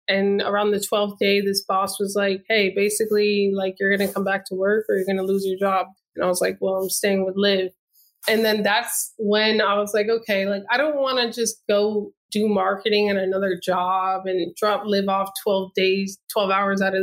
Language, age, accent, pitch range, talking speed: English, 20-39, American, 195-215 Hz, 230 wpm